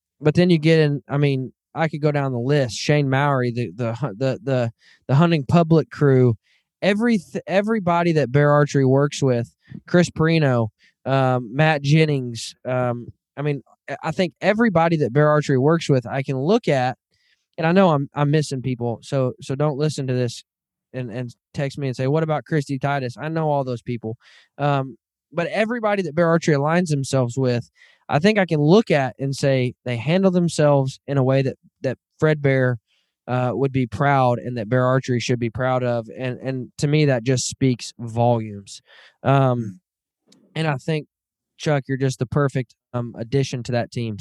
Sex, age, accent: male, 20-39, American